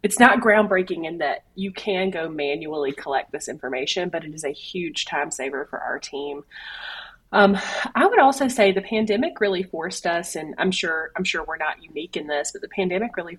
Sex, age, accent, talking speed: female, 30-49, American, 205 wpm